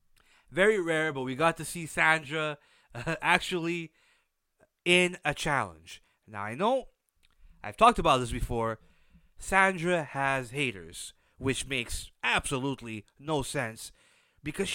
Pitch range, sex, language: 125-215 Hz, male, English